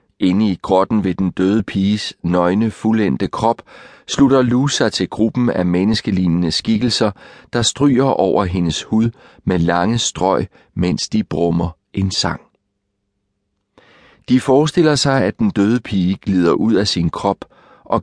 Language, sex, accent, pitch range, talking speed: Danish, male, native, 95-115 Hz, 145 wpm